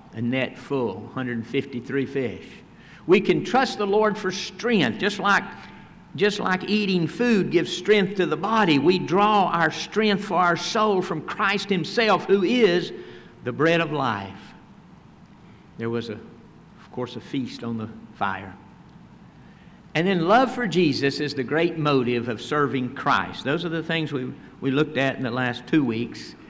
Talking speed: 170 wpm